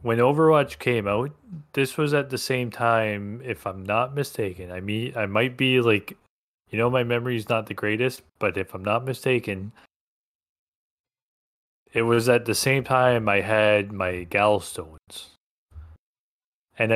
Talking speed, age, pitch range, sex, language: 155 wpm, 20-39, 105-130 Hz, male, English